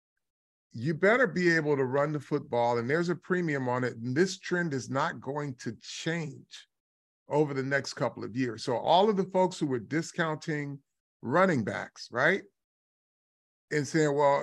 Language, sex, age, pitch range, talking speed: English, male, 40-59, 135-200 Hz, 175 wpm